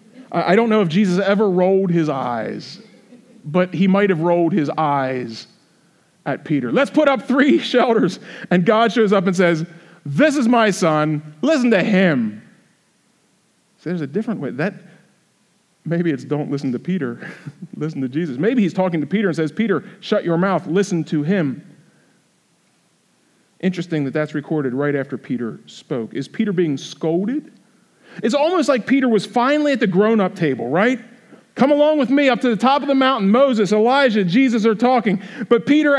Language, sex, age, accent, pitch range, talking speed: English, male, 40-59, American, 160-235 Hz, 175 wpm